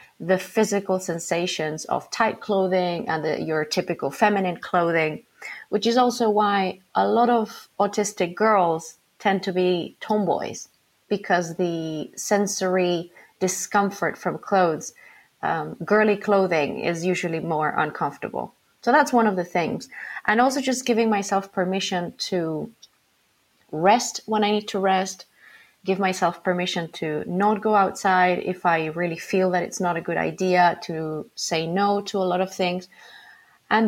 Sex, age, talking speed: female, 30-49, 145 wpm